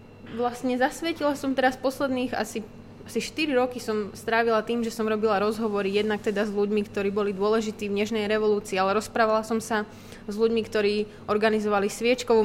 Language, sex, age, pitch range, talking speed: Slovak, female, 20-39, 215-240 Hz, 170 wpm